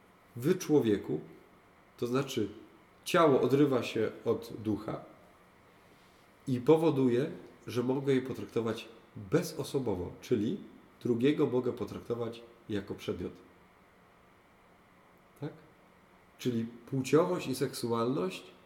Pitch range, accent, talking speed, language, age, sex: 110-145 Hz, native, 85 wpm, Polish, 40-59, male